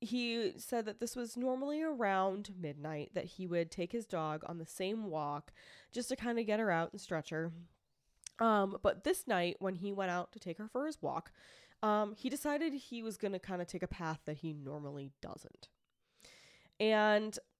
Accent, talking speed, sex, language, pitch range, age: American, 200 wpm, female, English, 165-215 Hz, 10-29